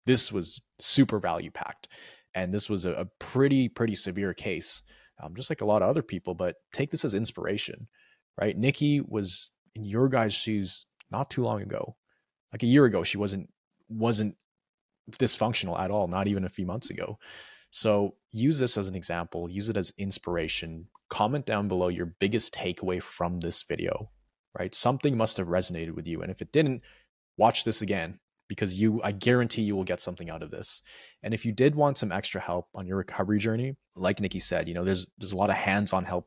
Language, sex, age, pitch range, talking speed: English, male, 20-39, 90-110 Hz, 200 wpm